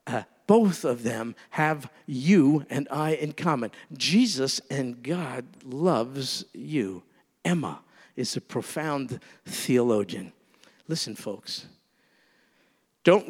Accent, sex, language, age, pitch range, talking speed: American, male, English, 50-69, 130-170 Hz, 100 wpm